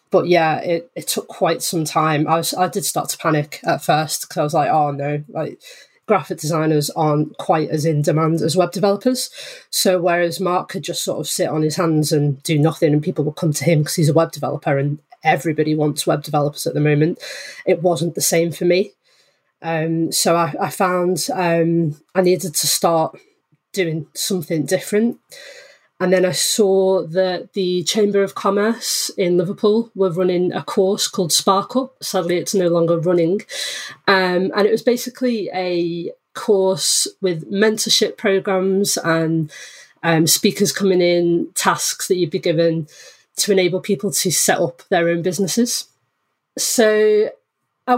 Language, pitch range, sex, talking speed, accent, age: English, 165-200 Hz, female, 175 wpm, British, 20-39